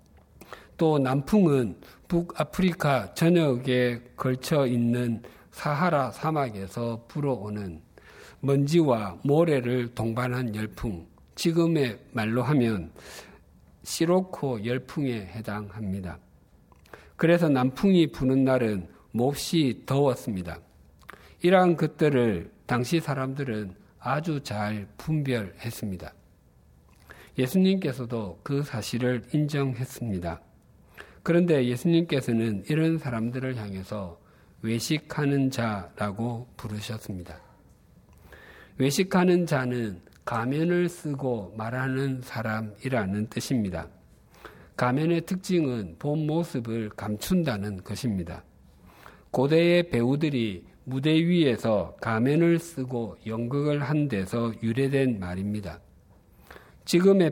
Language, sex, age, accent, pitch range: Korean, male, 50-69, native, 110-150 Hz